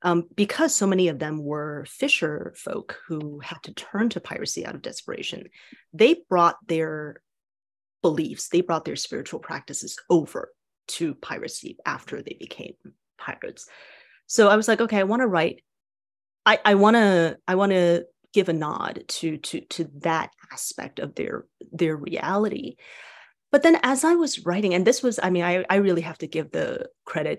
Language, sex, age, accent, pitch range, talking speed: English, female, 30-49, American, 160-215 Hz, 170 wpm